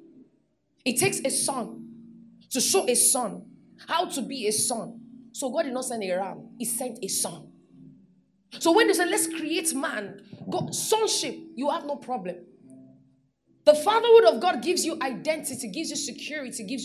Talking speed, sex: 165 wpm, female